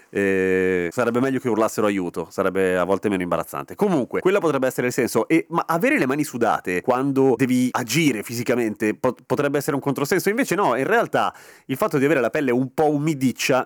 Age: 30-49